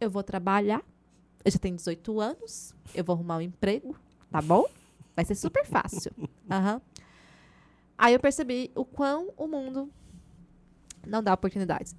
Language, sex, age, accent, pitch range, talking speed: Portuguese, female, 20-39, Brazilian, 175-215 Hz, 150 wpm